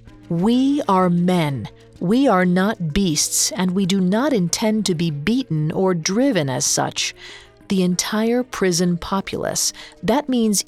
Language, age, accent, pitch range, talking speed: English, 40-59, American, 170-225 Hz, 140 wpm